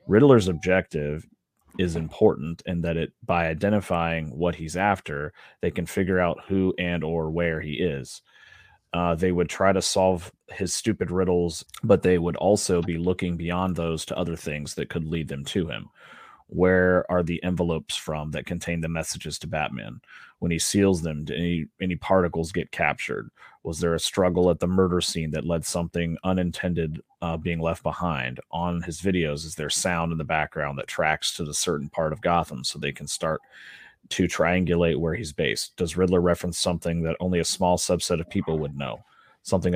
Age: 30-49